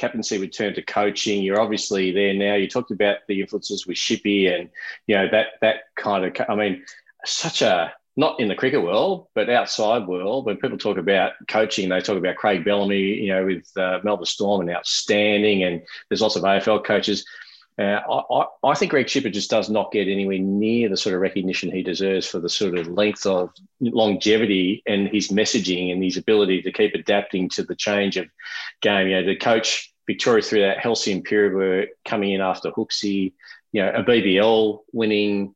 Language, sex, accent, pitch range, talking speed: English, male, Australian, 95-105 Hz, 200 wpm